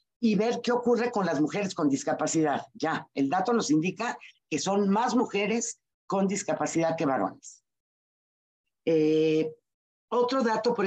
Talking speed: 145 wpm